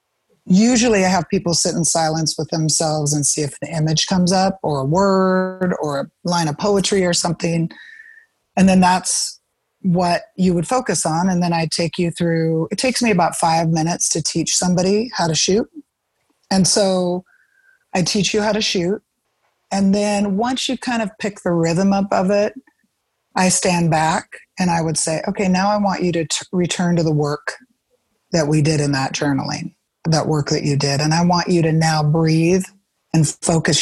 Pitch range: 155-195 Hz